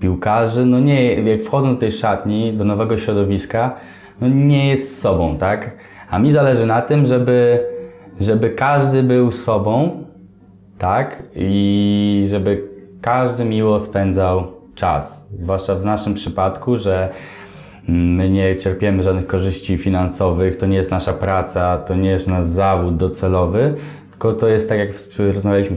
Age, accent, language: 20-39, native, Polish